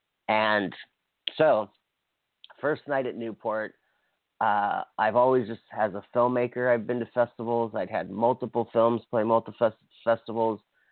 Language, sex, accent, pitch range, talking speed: English, male, American, 105-120 Hz, 135 wpm